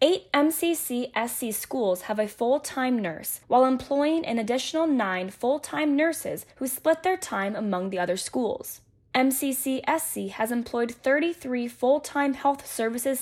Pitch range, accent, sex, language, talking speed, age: 230-310 Hz, American, female, English, 135 wpm, 10-29